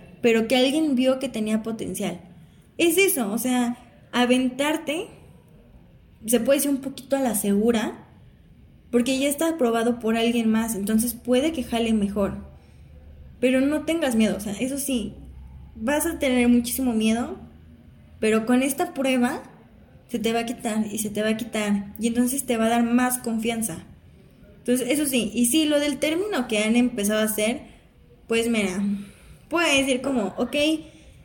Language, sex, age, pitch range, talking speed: Spanish, female, 10-29, 215-270 Hz, 165 wpm